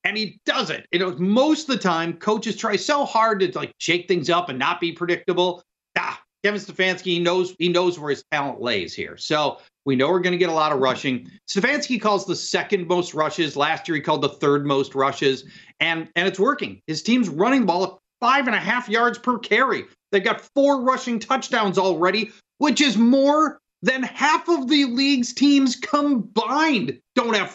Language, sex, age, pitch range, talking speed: English, male, 40-59, 170-250 Hz, 205 wpm